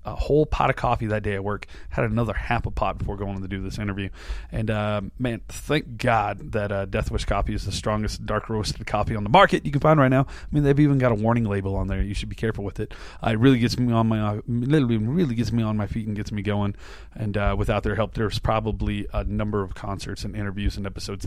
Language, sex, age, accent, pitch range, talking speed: English, male, 30-49, American, 100-120 Hz, 265 wpm